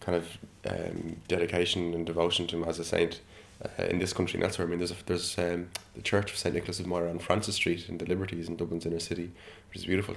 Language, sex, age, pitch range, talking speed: English, male, 20-39, 85-100 Hz, 260 wpm